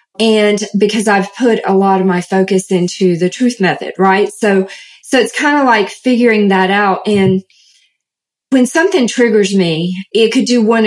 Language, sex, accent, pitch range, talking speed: English, female, American, 190-235 Hz, 175 wpm